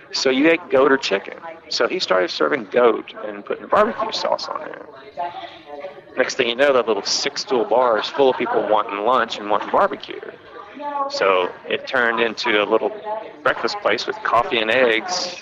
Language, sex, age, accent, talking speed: English, male, 40-59, American, 185 wpm